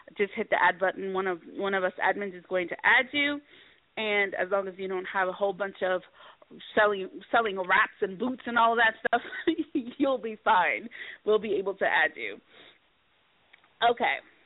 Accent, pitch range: American, 190-260 Hz